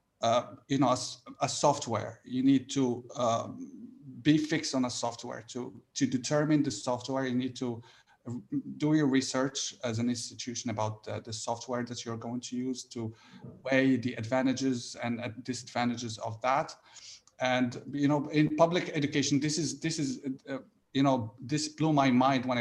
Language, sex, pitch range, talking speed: English, male, 125-155 Hz, 170 wpm